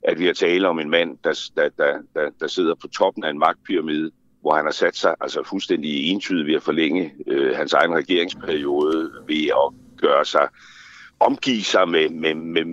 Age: 60-79